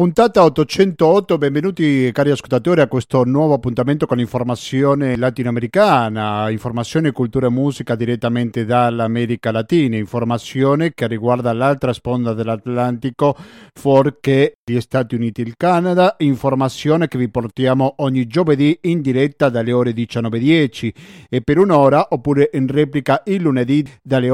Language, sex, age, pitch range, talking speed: Italian, male, 50-69, 120-155 Hz, 130 wpm